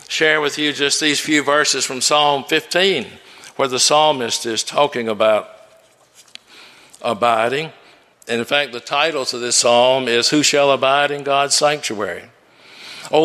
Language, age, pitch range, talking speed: English, 60-79, 140-180 Hz, 150 wpm